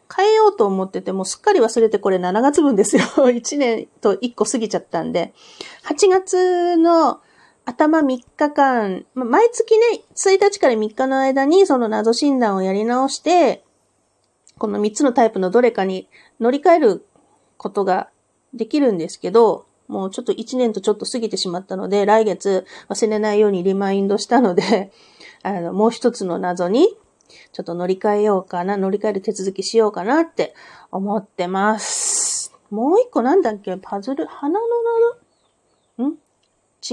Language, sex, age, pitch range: Japanese, female, 40-59, 205-330 Hz